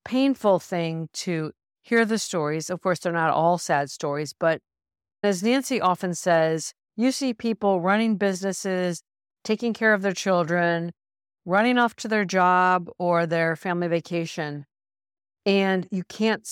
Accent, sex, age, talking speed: American, female, 50-69, 145 wpm